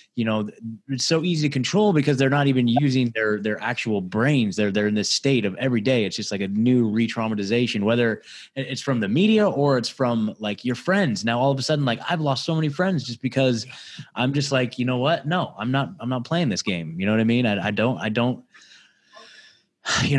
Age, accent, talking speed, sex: 20-39, American, 235 wpm, male